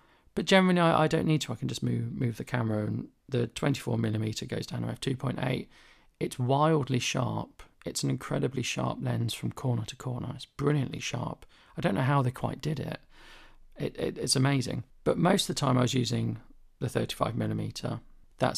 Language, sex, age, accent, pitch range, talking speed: English, male, 40-59, British, 115-140 Hz, 190 wpm